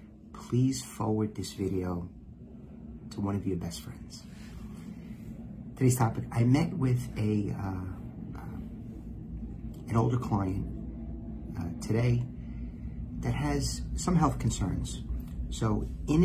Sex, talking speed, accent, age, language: male, 110 wpm, American, 50-69, English